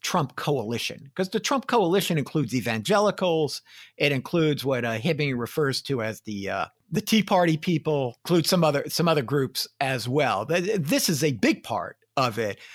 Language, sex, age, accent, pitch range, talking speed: English, male, 50-69, American, 130-180 Hz, 175 wpm